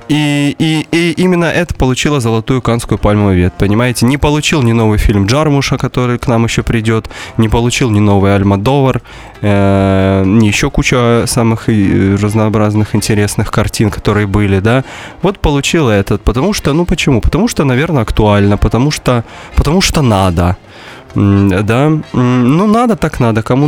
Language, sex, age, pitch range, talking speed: Russian, male, 20-39, 100-135 Hz, 150 wpm